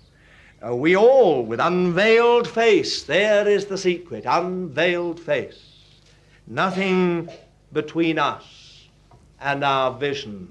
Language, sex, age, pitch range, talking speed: English, male, 60-79, 150-200 Hz, 95 wpm